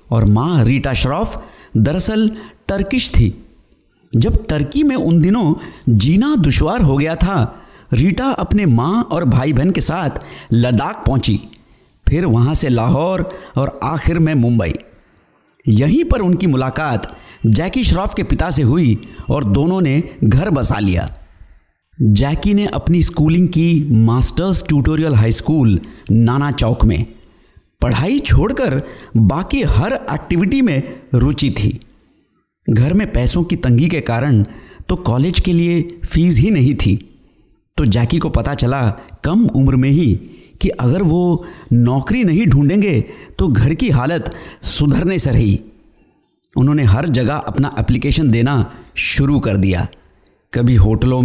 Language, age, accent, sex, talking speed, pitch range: Hindi, 50-69, native, male, 140 wpm, 115-170 Hz